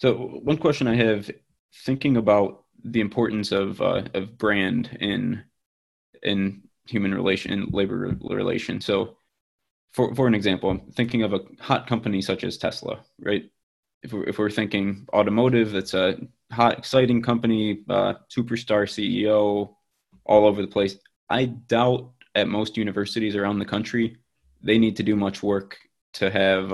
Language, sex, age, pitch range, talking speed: English, male, 20-39, 100-115 Hz, 155 wpm